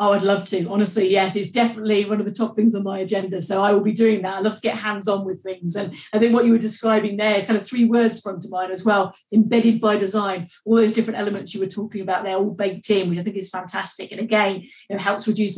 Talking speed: 280 wpm